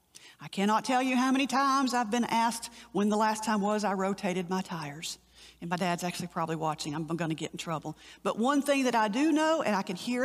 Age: 50-69